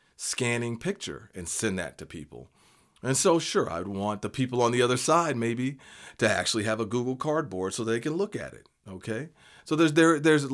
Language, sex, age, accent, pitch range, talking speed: English, male, 40-59, American, 90-120 Hz, 205 wpm